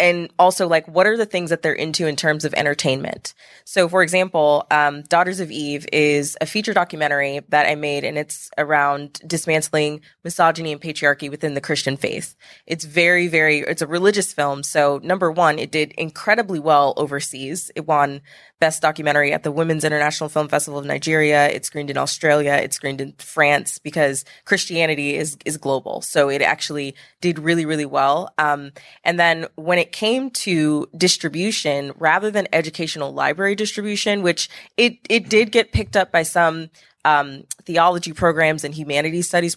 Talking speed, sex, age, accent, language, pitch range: 175 wpm, female, 20-39, American, English, 145-170 Hz